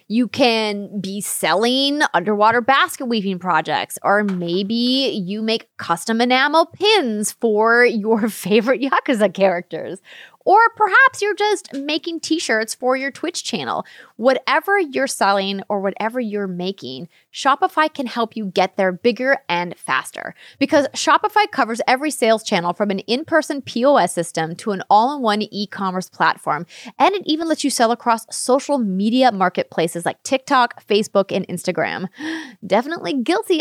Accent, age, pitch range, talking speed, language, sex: American, 20-39, 200-285 Hz, 140 wpm, English, female